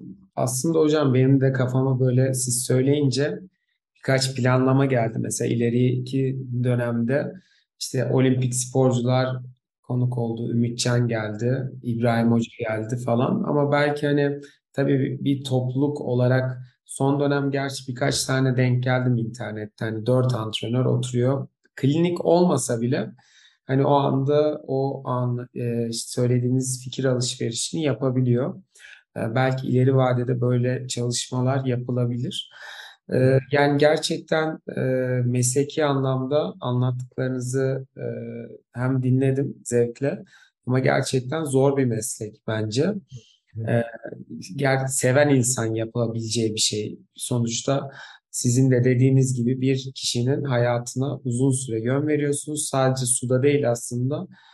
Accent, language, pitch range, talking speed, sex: native, Turkish, 120-135 Hz, 110 wpm, male